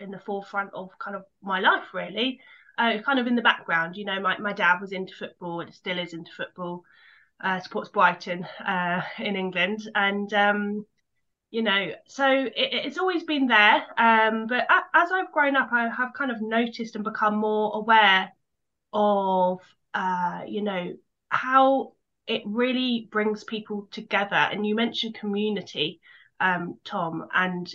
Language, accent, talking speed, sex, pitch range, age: English, British, 165 wpm, female, 185-220 Hz, 20-39